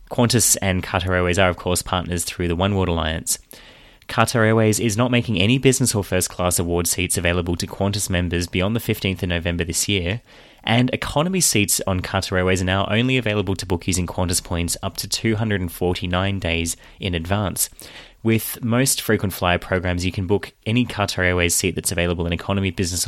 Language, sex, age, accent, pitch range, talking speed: English, male, 20-39, Australian, 90-110 Hz, 190 wpm